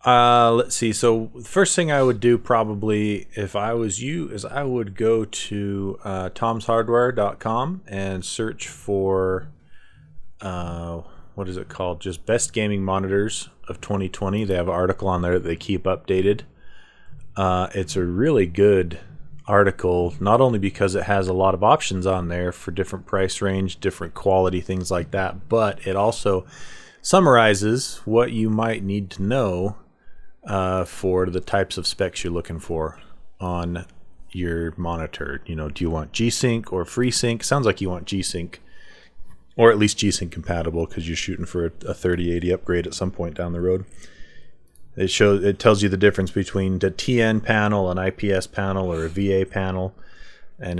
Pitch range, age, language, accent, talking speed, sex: 90-110 Hz, 30-49, English, American, 170 wpm, male